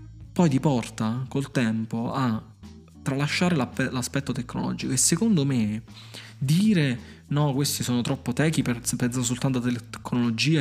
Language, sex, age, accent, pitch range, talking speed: Italian, male, 20-39, native, 120-155 Hz, 125 wpm